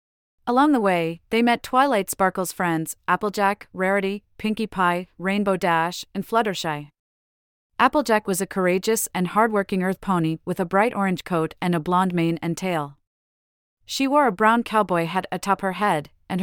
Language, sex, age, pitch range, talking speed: English, female, 30-49, 170-210 Hz, 165 wpm